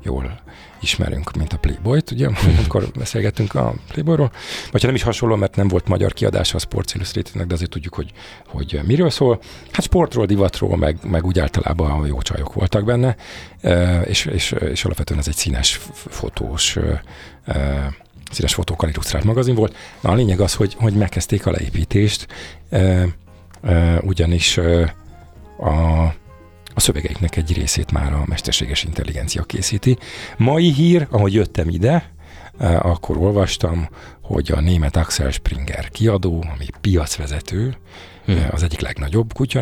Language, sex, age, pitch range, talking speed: Hungarian, male, 40-59, 75-100 Hz, 145 wpm